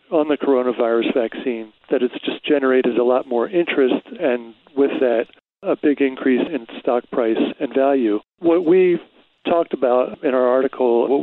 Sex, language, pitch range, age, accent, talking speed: male, English, 125-155 Hz, 40-59, American, 165 wpm